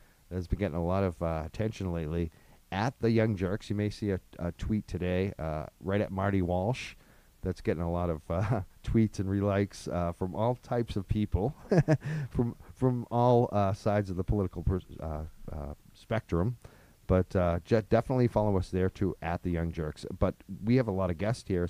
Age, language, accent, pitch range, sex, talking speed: 40-59, English, American, 85-110 Hz, male, 200 wpm